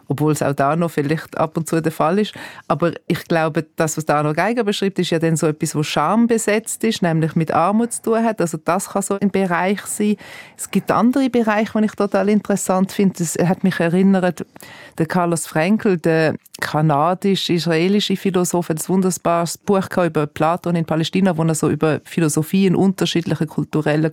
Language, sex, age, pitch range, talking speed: German, female, 30-49, 165-200 Hz, 195 wpm